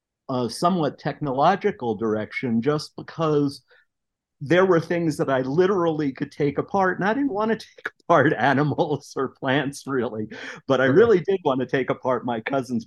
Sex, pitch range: male, 110-140 Hz